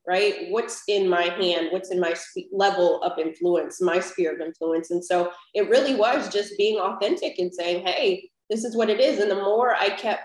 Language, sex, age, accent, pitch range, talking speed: English, female, 20-39, American, 180-230 Hz, 215 wpm